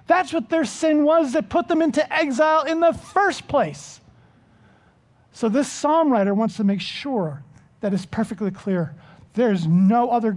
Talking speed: 170 wpm